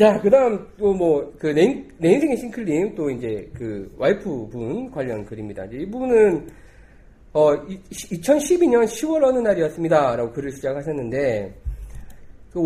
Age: 40-59